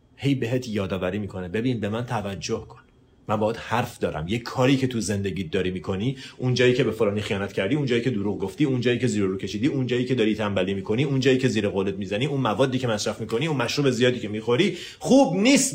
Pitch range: 100-135 Hz